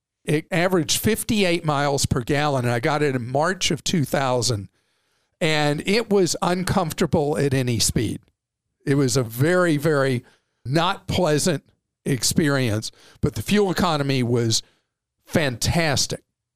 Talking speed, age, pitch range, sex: 125 wpm, 50-69, 130-170 Hz, male